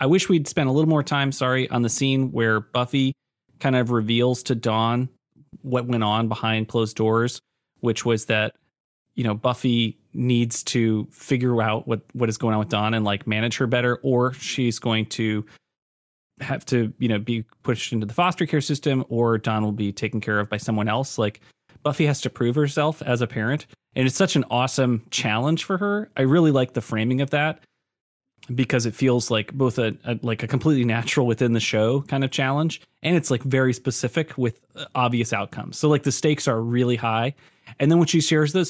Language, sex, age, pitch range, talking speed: English, male, 30-49, 115-140 Hz, 210 wpm